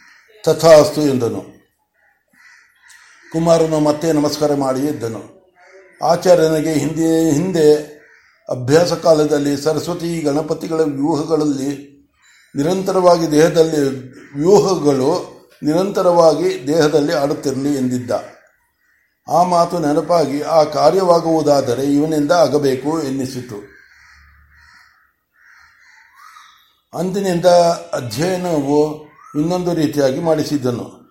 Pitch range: 145-175 Hz